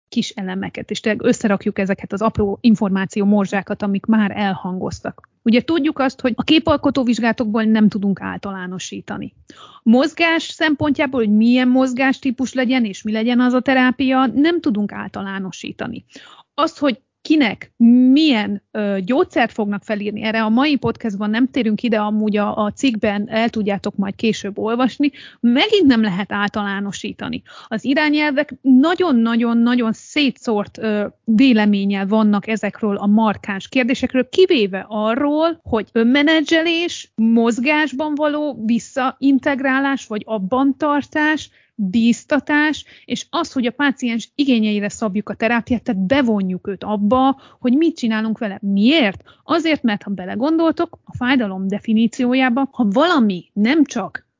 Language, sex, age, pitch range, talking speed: Hungarian, female, 30-49, 210-270 Hz, 125 wpm